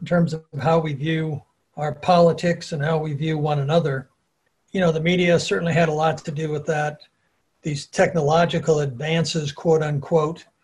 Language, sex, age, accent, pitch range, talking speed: English, male, 60-79, American, 150-180 Hz, 175 wpm